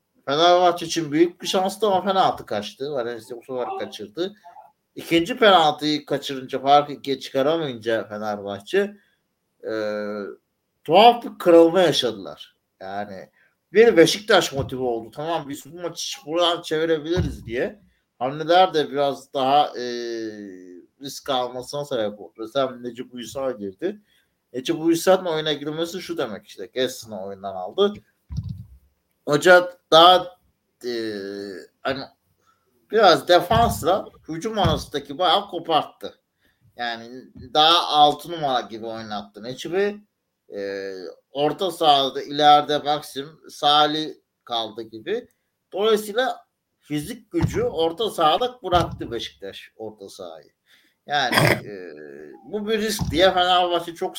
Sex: male